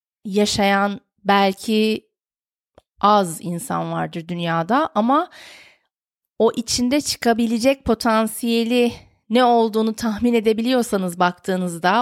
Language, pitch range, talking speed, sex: Turkish, 185-235 Hz, 80 wpm, female